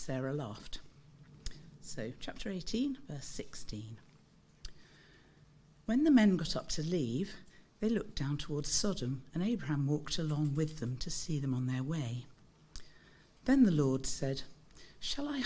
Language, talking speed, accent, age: English, 145 wpm, British, 50-69